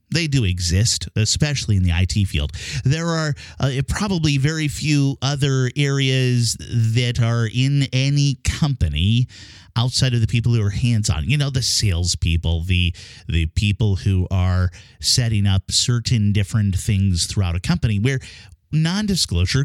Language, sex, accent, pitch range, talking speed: English, male, American, 95-130 Hz, 145 wpm